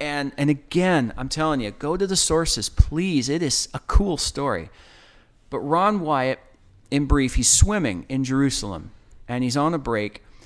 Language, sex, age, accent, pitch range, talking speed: English, male, 40-59, American, 125-170 Hz, 170 wpm